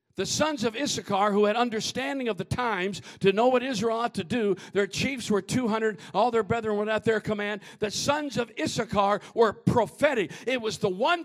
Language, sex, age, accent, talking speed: English, male, 50-69, American, 205 wpm